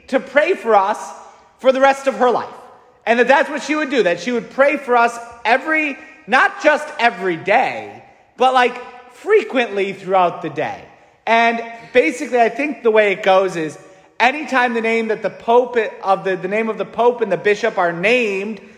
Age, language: 30-49, English